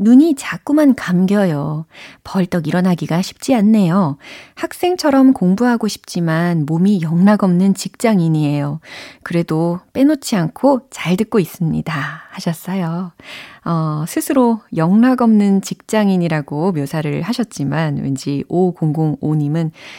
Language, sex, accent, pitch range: Korean, female, native, 160-235 Hz